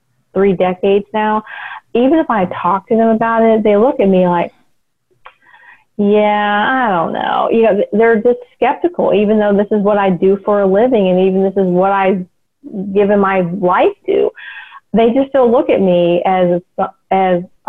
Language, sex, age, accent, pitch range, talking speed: English, female, 30-49, American, 195-235 Hz, 180 wpm